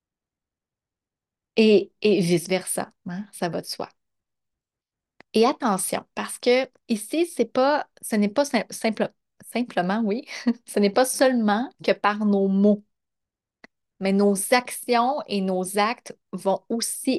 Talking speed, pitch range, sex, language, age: 115 wpm, 190-235 Hz, female, French, 30-49